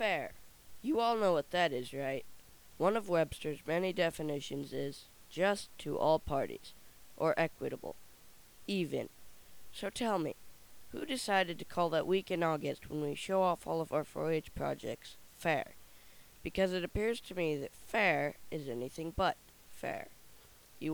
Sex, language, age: female, English, 20-39